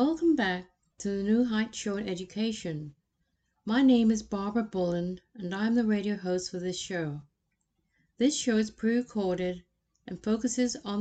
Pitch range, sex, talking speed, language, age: 180-220 Hz, female, 160 wpm, English, 60-79